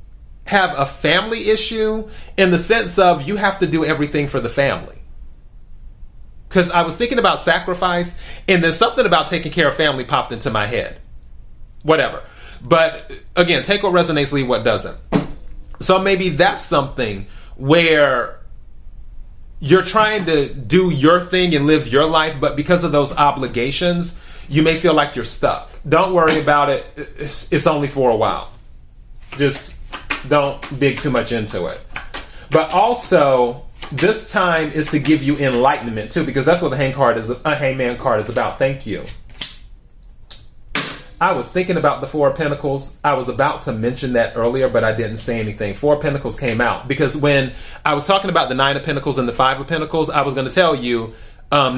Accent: American